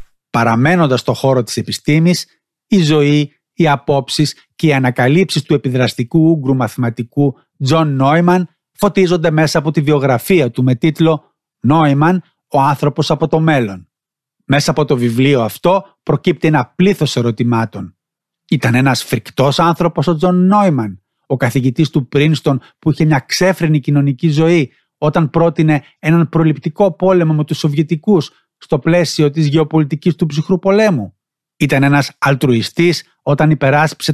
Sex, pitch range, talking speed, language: male, 135-170 Hz, 135 wpm, Greek